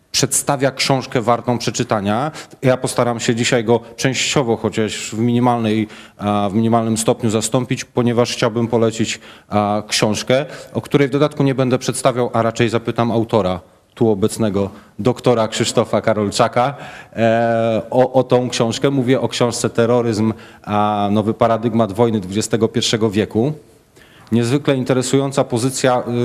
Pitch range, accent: 115-140 Hz, native